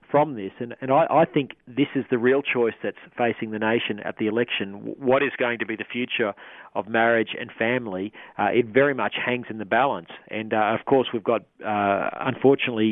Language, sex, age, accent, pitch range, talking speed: English, male, 40-59, Australian, 110-130 Hz, 215 wpm